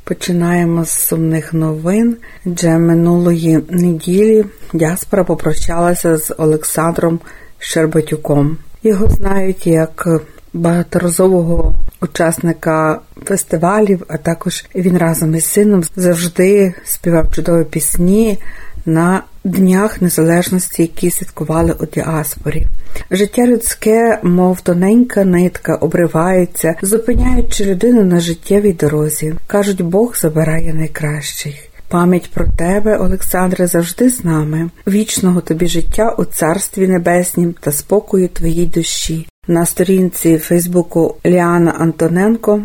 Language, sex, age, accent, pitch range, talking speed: Ukrainian, female, 50-69, native, 165-190 Hz, 100 wpm